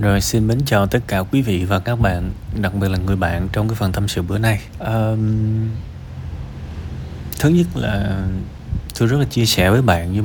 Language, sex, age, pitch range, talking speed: Vietnamese, male, 20-39, 85-110 Hz, 205 wpm